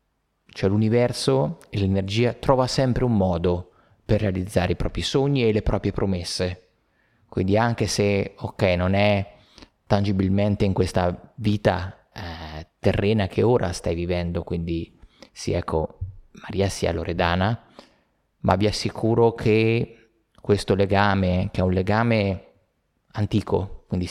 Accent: native